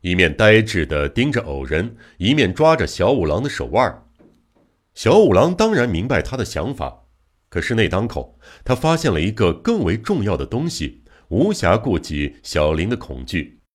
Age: 60-79